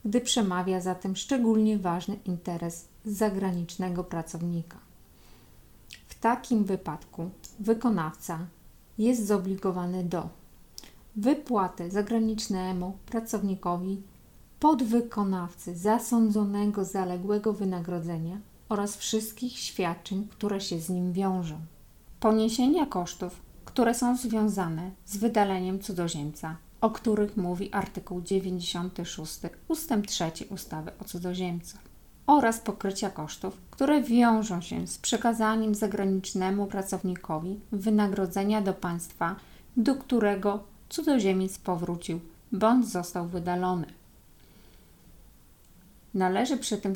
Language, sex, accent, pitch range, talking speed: Polish, female, native, 180-220 Hz, 90 wpm